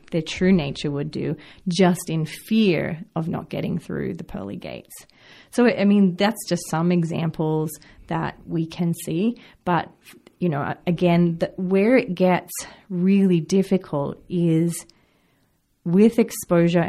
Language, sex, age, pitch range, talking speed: English, female, 30-49, 160-190 Hz, 135 wpm